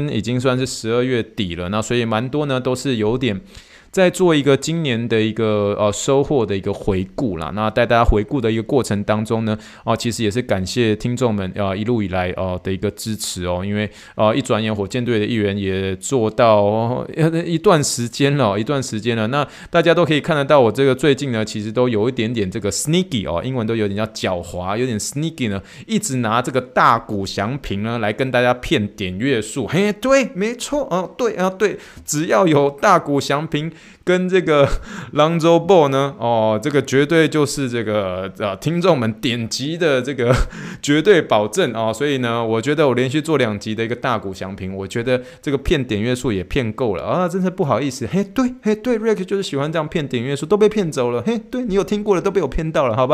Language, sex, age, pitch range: Chinese, male, 20-39, 105-150 Hz